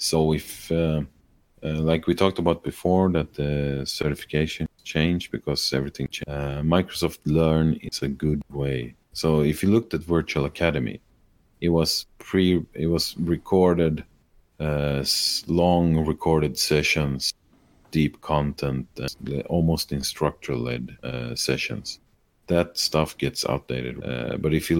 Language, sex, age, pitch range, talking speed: English, male, 40-59, 70-85 Hz, 135 wpm